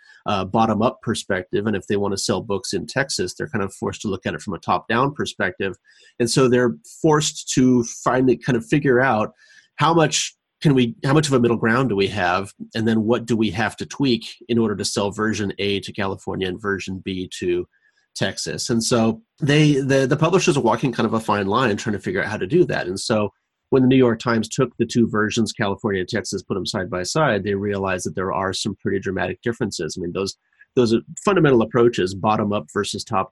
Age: 30-49